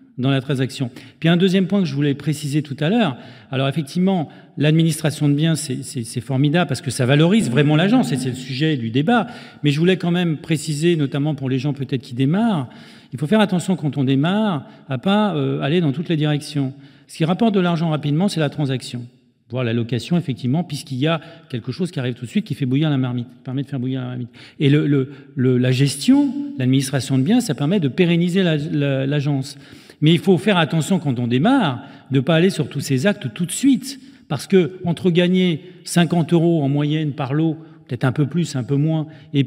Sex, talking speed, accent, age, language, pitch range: male, 230 wpm, French, 40-59, French, 135-180 Hz